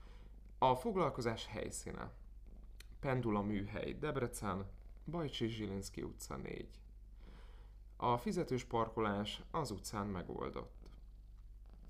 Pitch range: 100-125 Hz